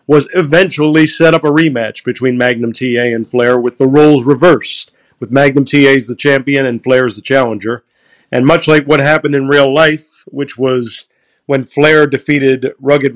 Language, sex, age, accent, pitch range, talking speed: English, male, 40-59, American, 125-155 Hz, 180 wpm